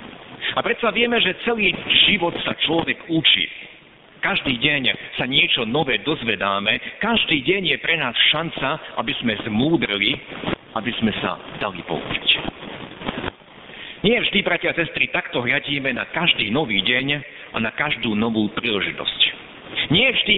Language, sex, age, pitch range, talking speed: Slovak, male, 50-69, 135-200 Hz, 140 wpm